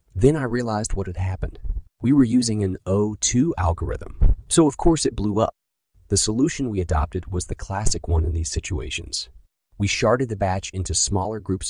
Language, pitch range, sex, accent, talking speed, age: English, 90-110 Hz, male, American, 185 wpm, 30-49